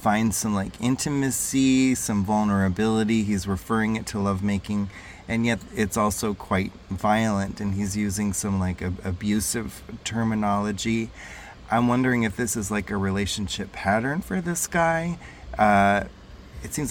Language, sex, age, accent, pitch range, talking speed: English, male, 30-49, American, 95-110 Hz, 140 wpm